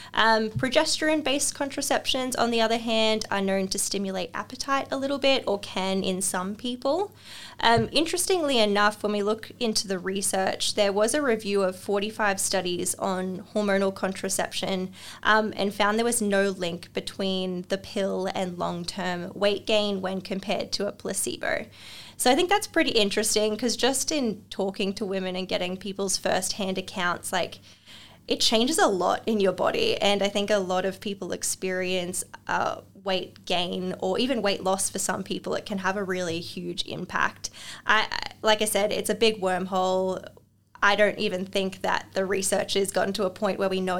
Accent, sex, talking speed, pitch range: Australian, female, 180 wpm, 185-220 Hz